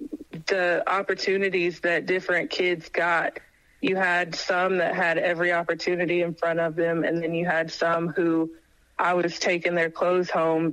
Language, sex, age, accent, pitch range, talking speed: English, female, 30-49, American, 165-195 Hz, 160 wpm